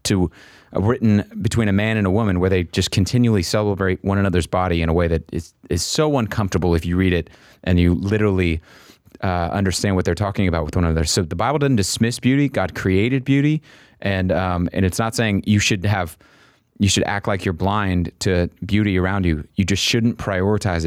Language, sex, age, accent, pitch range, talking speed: English, male, 30-49, American, 90-115 Hz, 210 wpm